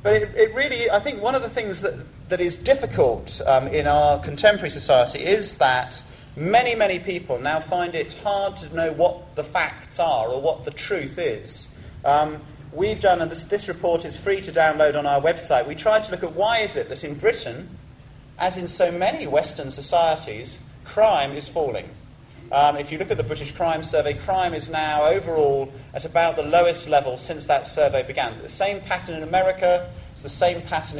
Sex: male